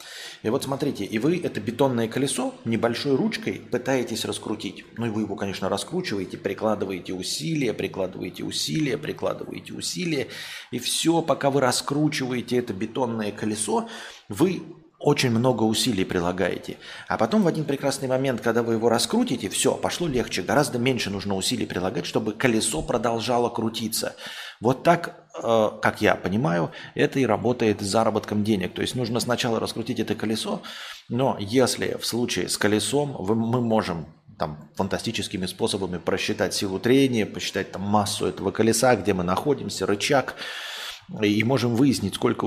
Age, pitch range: 30-49, 105-135 Hz